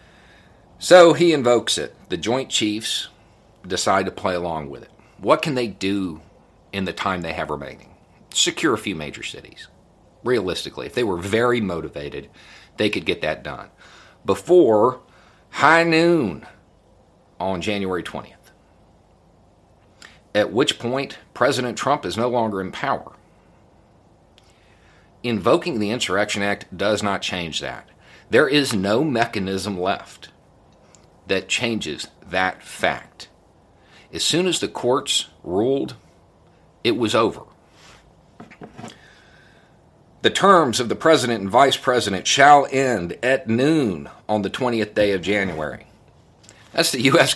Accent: American